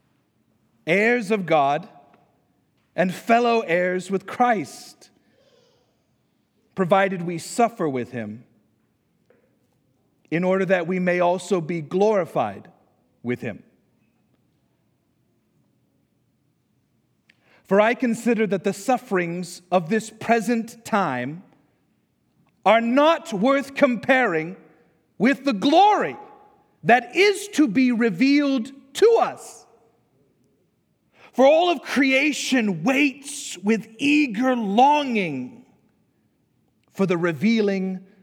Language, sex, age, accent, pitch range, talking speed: English, male, 40-59, American, 175-255 Hz, 90 wpm